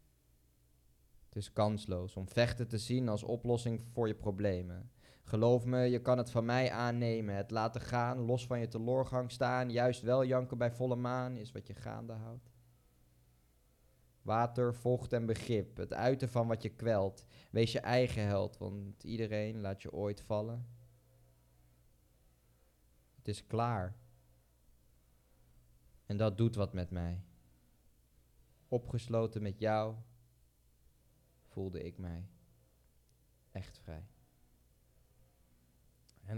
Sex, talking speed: male, 125 wpm